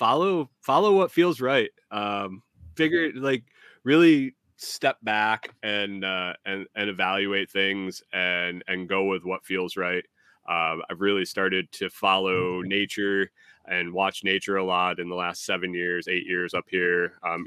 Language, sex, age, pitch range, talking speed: English, male, 20-39, 90-105 Hz, 160 wpm